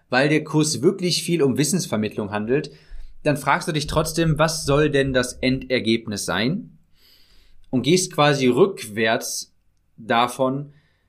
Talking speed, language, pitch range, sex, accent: 130 wpm, German, 120-155 Hz, male, German